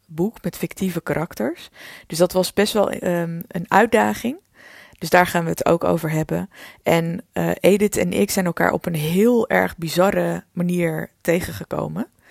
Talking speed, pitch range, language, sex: 165 wpm, 155-190 Hz, Dutch, female